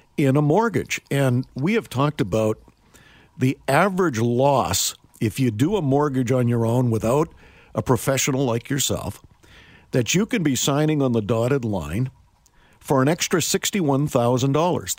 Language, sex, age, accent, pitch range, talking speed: English, male, 50-69, American, 120-150 Hz, 150 wpm